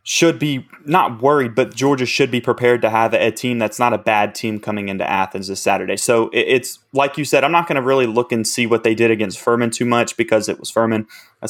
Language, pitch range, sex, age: English, 110-120 Hz, male, 20-39